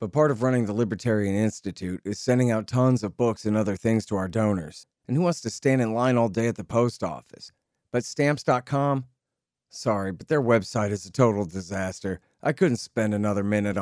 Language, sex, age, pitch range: English, male, 40-59, 110-145 Hz